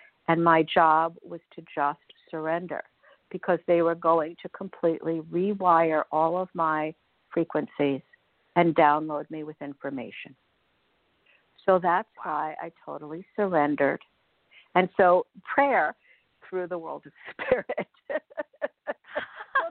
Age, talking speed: 60-79, 115 wpm